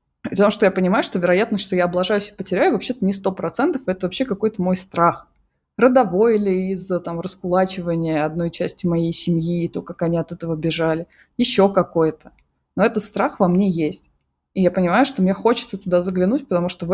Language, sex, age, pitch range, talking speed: Russian, female, 20-39, 175-220 Hz, 195 wpm